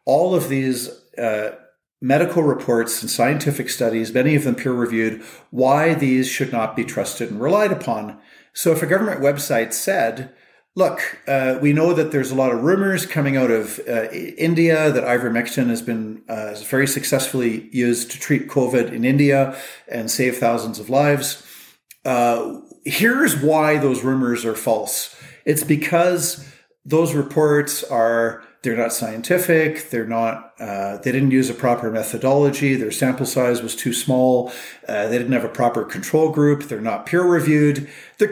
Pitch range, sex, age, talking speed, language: 120-150 Hz, male, 50-69, 165 wpm, English